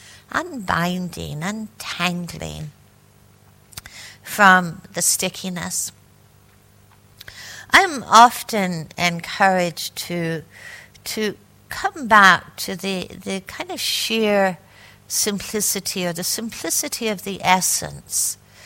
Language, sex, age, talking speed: English, female, 60-79, 80 wpm